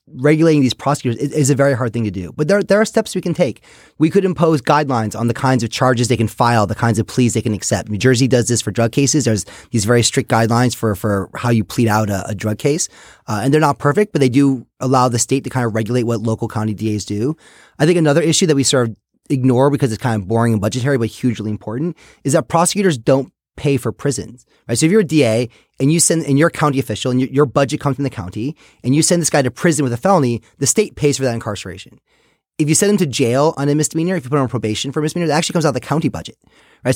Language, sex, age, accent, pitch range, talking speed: English, male, 30-49, American, 115-150 Hz, 275 wpm